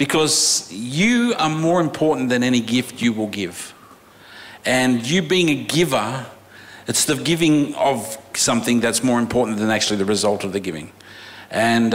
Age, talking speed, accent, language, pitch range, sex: 50-69, 160 wpm, Australian, English, 115-140 Hz, male